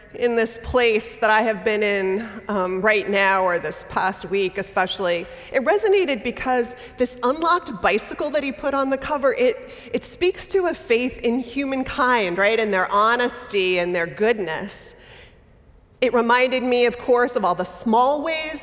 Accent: American